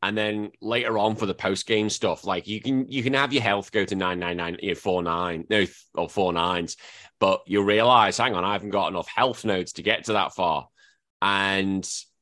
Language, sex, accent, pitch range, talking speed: English, male, British, 95-115 Hz, 225 wpm